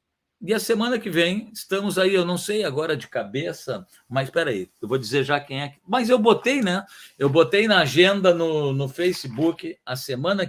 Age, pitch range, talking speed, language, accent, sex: 50-69, 130-180 Hz, 200 wpm, Portuguese, Brazilian, male